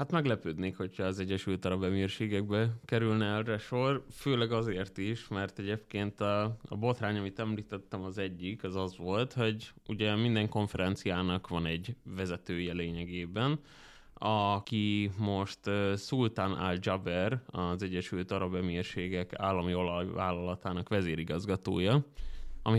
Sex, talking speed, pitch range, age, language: male, 120 wpm, 95-110 Hz, 20-39, Hungarian